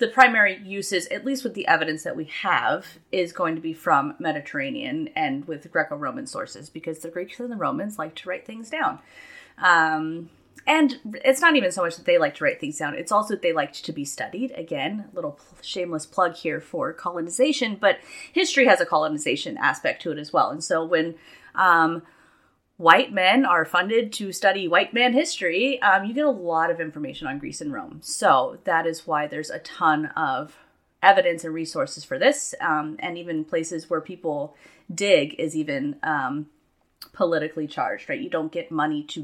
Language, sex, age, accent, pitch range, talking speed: English, female, 30-49, American, 160-260 Hz, 195 wpm